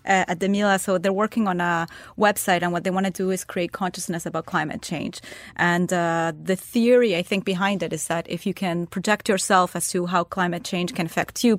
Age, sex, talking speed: 30-49, female, 230 wpm